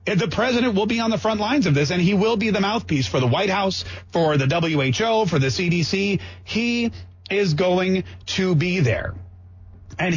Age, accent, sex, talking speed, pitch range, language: 30-49, American, male, 195 wpm, 135-200 Hz, English